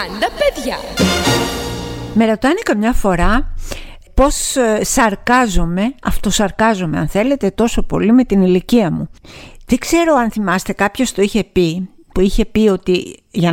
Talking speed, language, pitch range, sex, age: 125 wpm, Greek, 185-245 Hz, female, 50-69